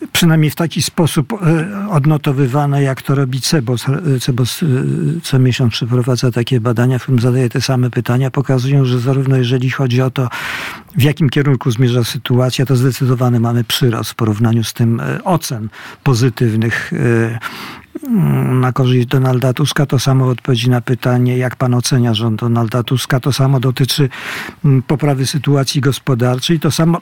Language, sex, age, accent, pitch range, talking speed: Polish, male, 50-69, native, 125-155 Hz, 145 wpm